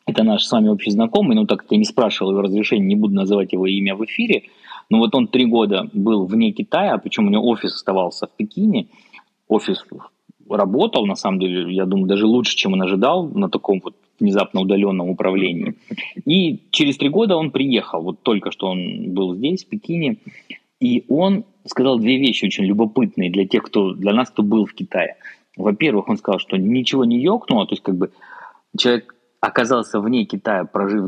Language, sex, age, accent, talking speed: Russian, male, 20-39, native, 195 wpm